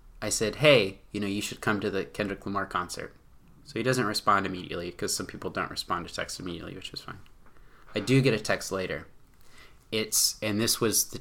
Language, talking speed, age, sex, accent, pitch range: English, 215 wpm, 30-49, male, American, 105-145 Hz